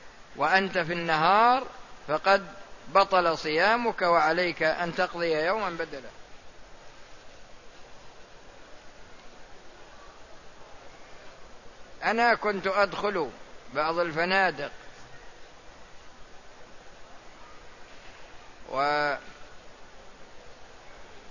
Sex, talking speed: male, 50 wpm